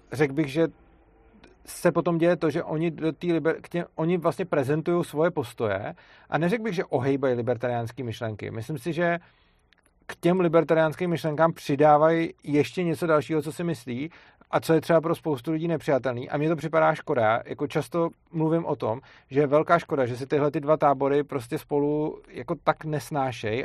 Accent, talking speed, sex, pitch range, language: native, 170 wpm, male, 140-160 Hz, Czech